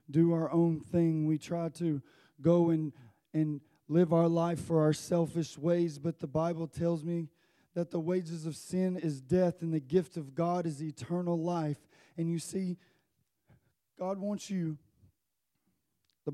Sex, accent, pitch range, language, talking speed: male, American, 150-170 Hz, English, 160 wpm